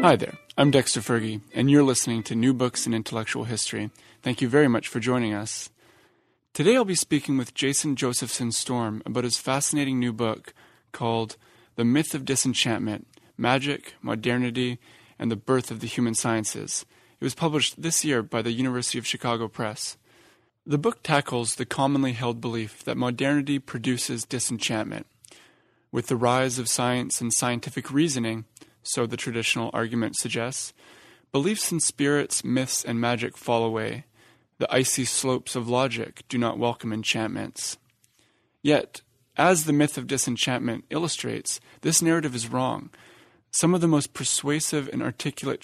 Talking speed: 155 wpm